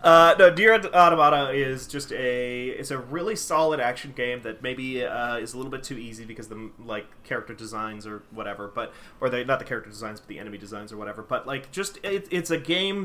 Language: English